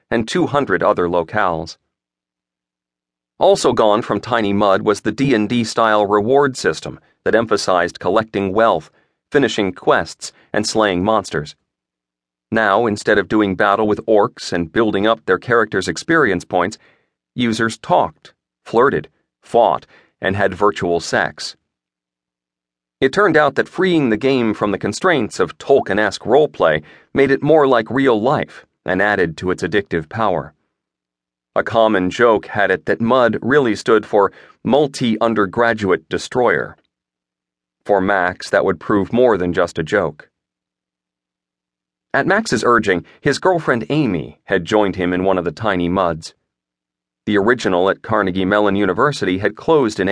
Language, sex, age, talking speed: English, male, 40-59, 140 wpm